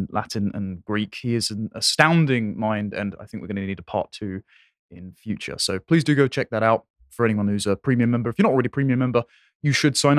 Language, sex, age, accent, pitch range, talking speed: English, male, 20-39, British, 105-150 Hz, 255 wpm